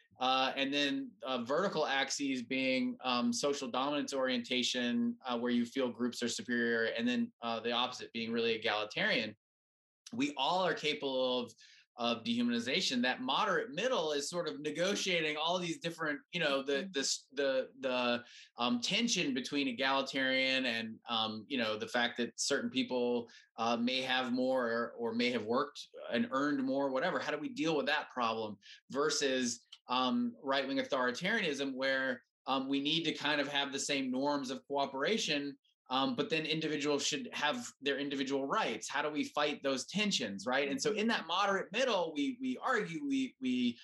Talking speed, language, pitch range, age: 175 wpm, English, 125-165 Hz, 20-39